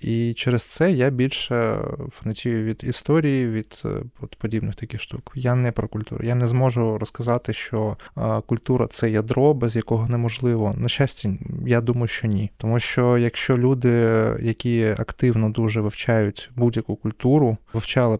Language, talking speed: Ukrainian, 145 wpm